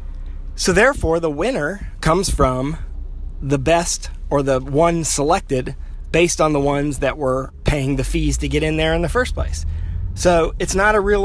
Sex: male